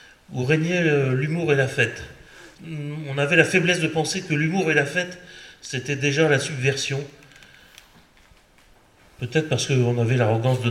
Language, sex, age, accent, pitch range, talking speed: French, male, 30-49, French, 125-160 Hz, 150 wpm